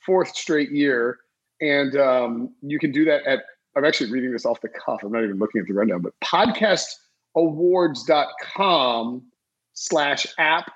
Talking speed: 155 wpm